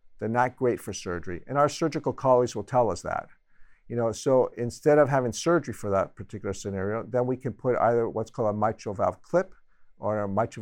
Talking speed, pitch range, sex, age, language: 215 wpm, 105-130 Hz, male, 50-69, English